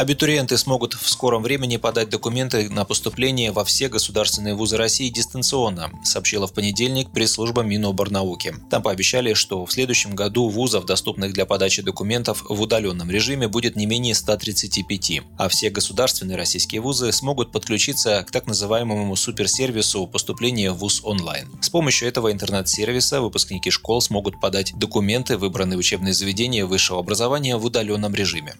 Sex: male